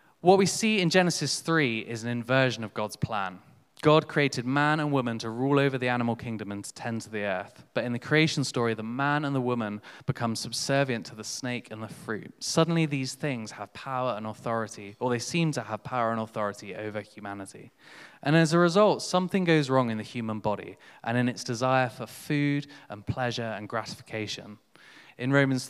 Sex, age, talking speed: male, 20-39, 205 wpm